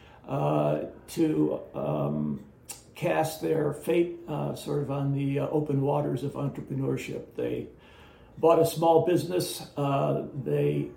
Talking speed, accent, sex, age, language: 120 wpm, American, male, 60-79, English